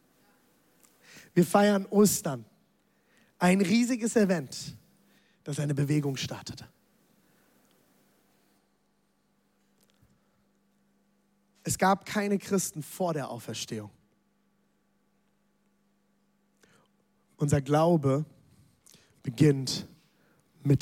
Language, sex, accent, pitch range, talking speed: German, male, German, 135-180 Hz, 60 wpm